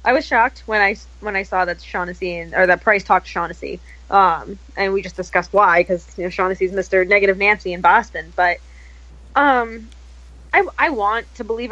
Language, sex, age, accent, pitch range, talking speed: English, female, 10-29, American, 185-235 Hz, 200 wpm